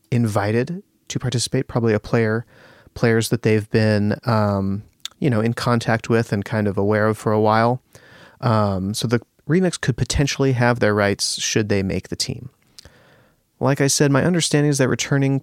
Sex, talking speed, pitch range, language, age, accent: male, 180 wpm, 110-135 Hz, English, 30-49, American